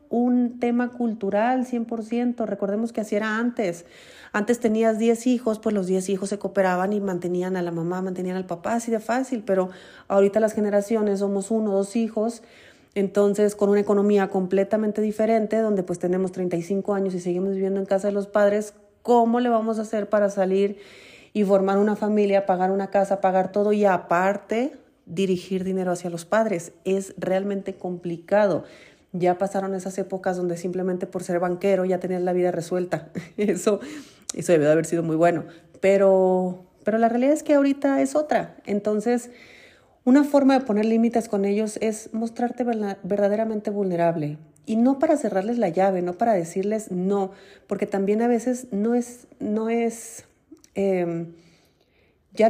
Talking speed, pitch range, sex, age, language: 170 wpm, 185-225 Hz, female, 30-49, Spanish